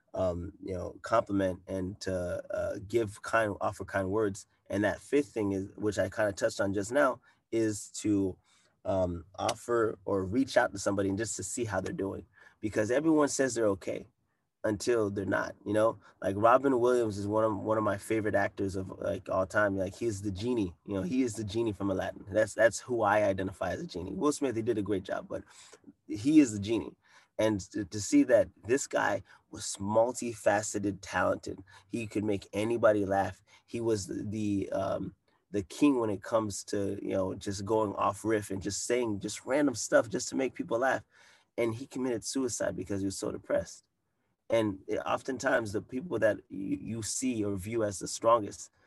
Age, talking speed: 20-39, 200 wpm